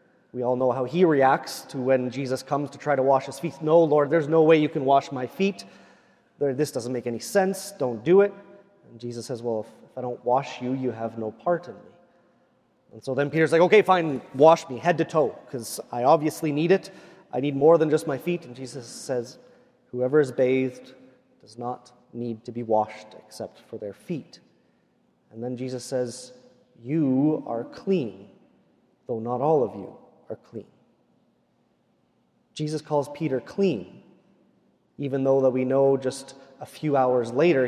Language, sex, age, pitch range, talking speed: English, male, 30-49, 130-170 Hz, 185 wpm